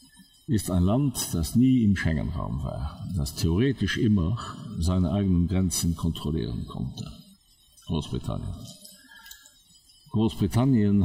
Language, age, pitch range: German, 50-69, 80-100 Hz